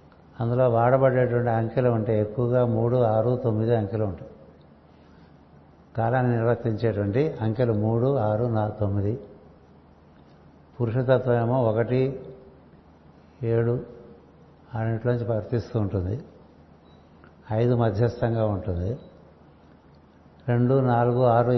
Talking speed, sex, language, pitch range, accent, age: 80 wpm, male, Telugu, 95-125 Hz, native, 60-79